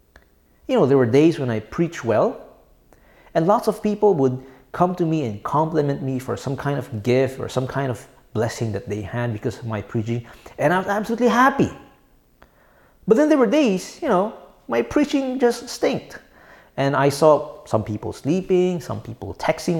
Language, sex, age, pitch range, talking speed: English, male, 30-49, 125-195 Hz, 190 wpm